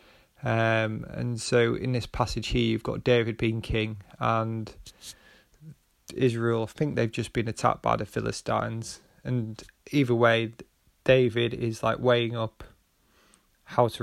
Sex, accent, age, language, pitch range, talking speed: male, British, 20-39, English, 110-125 Hz, 140 wpm